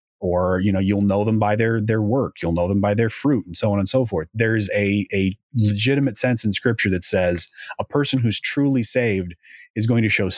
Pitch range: 95-120 Hz